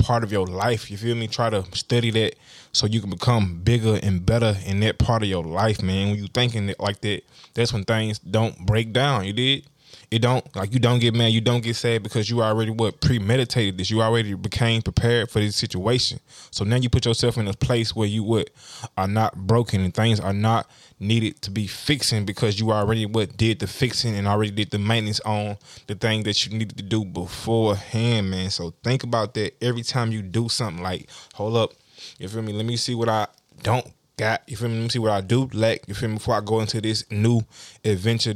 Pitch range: 105-120 Hz